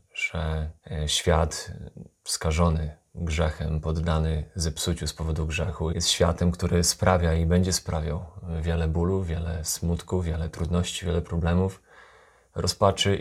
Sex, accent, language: male, native, Polish